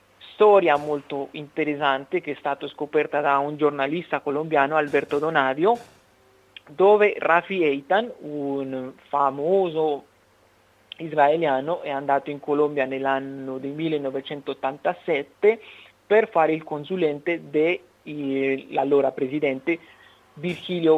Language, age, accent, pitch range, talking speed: Italian, 40-59, native, 140-165 Hz, 90 wpm